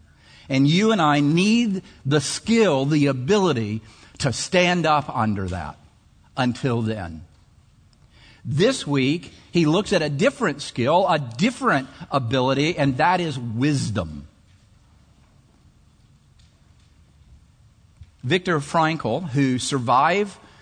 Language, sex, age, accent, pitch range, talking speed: English, male, 50-69, American, 130-175 Hz, 100 wpm